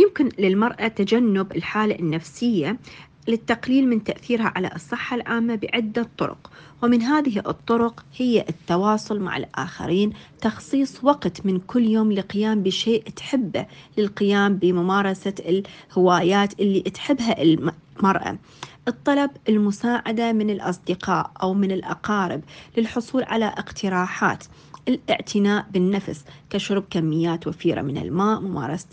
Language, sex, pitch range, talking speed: Arabic, female, 180-230 Hz, 110 wpm